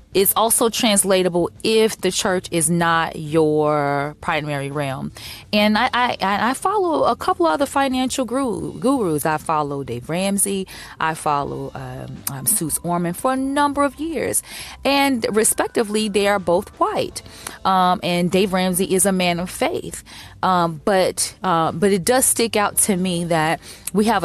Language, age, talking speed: English, 20-39, 165 wpm